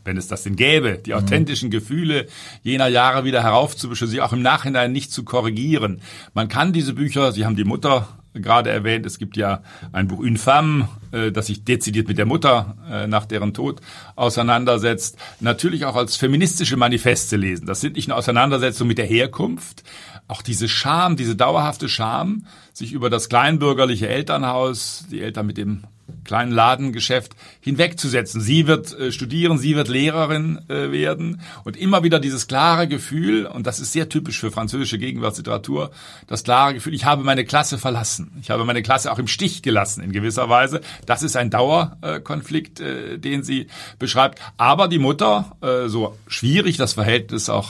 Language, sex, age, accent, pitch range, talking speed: German, male, 50-69, German, 110-145 Hz, 170 wpm